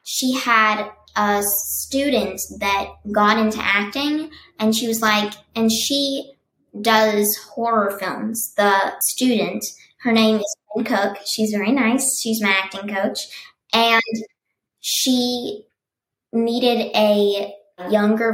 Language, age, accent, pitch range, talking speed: English, 10-29, American, 205-230 Hz, 120 wpm